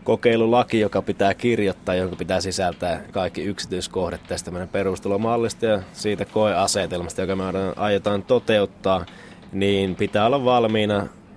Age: 20-39